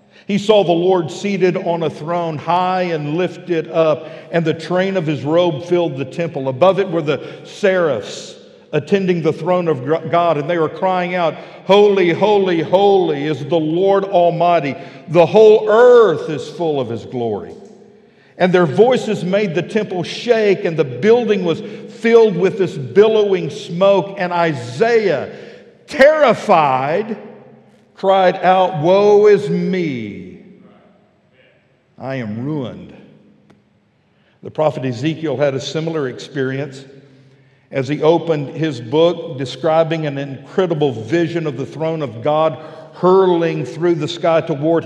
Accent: American